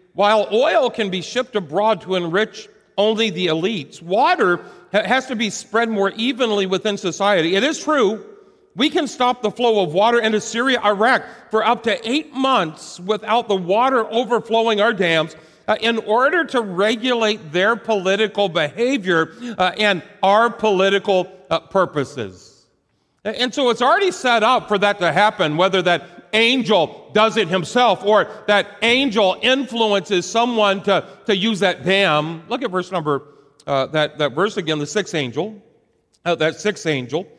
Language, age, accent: English, 50-69, American